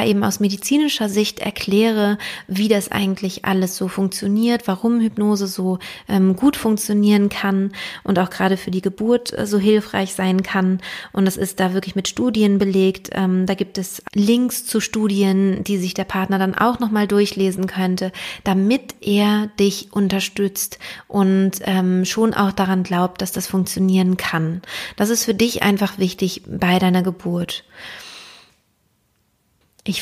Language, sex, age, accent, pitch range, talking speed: German, female, 30-49, German, 190-210 Hz, 150 wpm